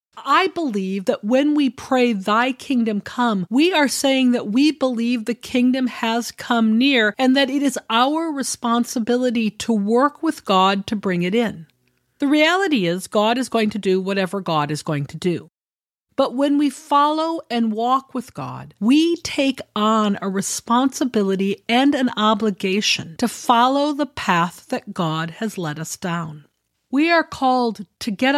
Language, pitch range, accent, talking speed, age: English, 210-260 Hz, American, 165 wpm, 40-59